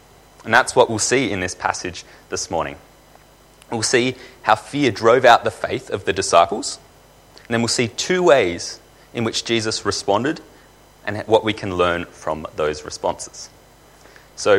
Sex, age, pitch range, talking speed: male, 30-49, 90-130 Hz, 165 wpm